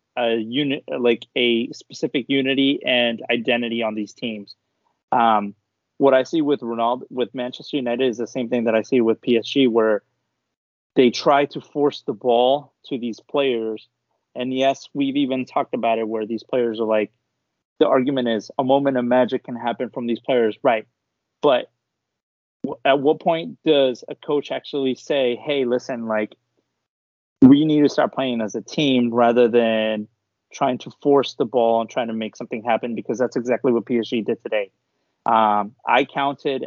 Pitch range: 115-135 Hz